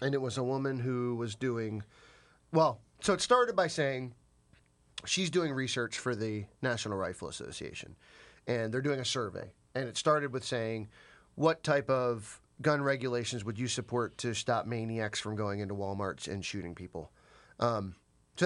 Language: English